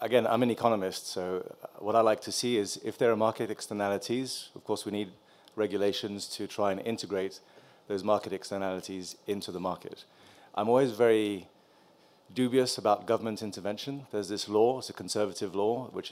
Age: 30-49